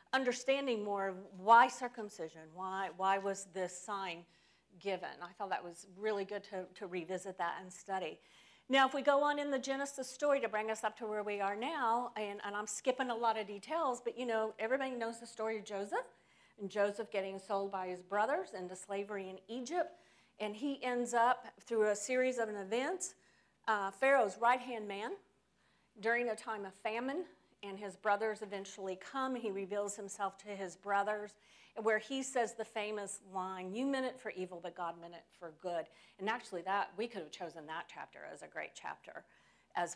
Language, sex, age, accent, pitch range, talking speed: English, female, 50-69, American, 190-240 Hz, 190 wpm